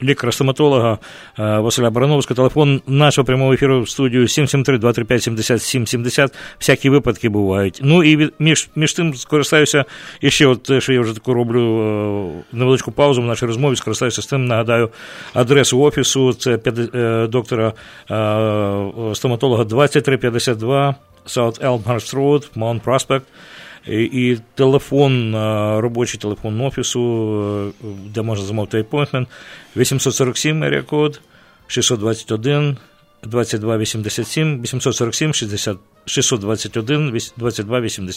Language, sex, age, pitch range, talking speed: English, male, 50-69, 115-140 Hz, 100 wpm